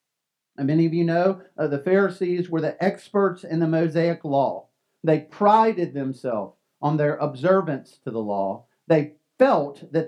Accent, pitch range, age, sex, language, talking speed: American, 145-195 Hz, 40-59, male, English, 155 wpm